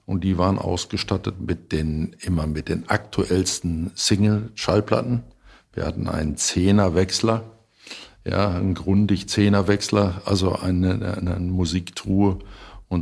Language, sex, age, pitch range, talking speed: German, male, 60-79, 90-105 Hz, 110 wpm